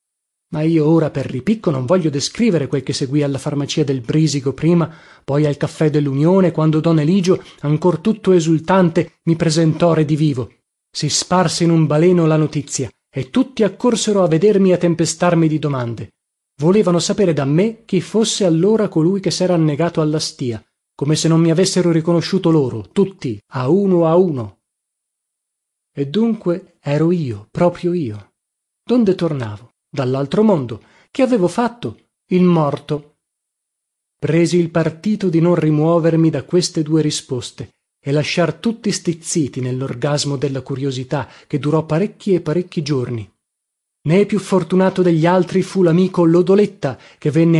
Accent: native